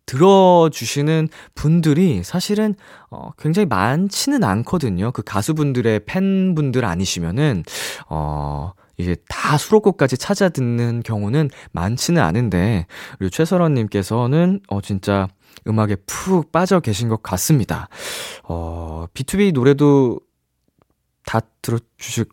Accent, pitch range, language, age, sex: native, 100-170 Hz, Korean, 20-39, male